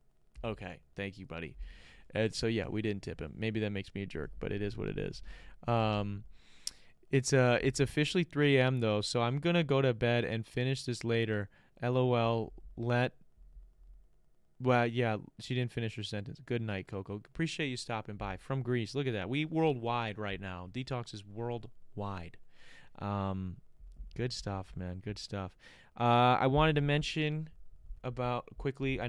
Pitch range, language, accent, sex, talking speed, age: 105-125 Hz, English, American, male, 175 wpm, 20-39